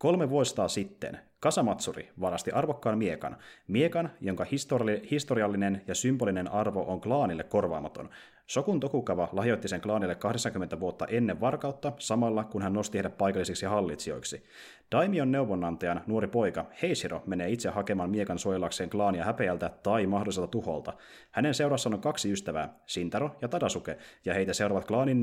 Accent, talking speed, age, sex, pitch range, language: native, 145 wpm, 30-49, male, 90-120 Hz, Finnish